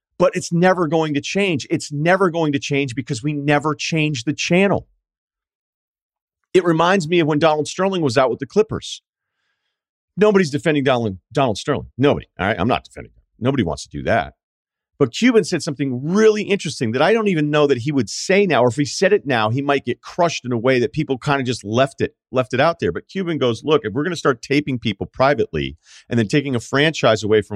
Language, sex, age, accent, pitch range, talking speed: English, male, 40-59, American, 110-155 Hz, 230 wpm